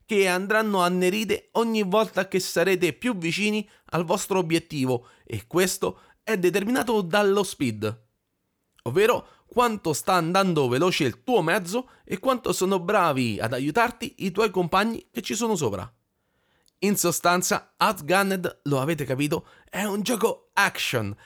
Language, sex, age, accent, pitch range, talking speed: Italian, male, 30-49, native, 145-210 Hz, 135 wpm